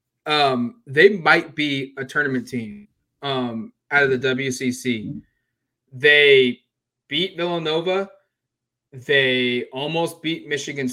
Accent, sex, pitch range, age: American, male, 125-150 Hz, 20-39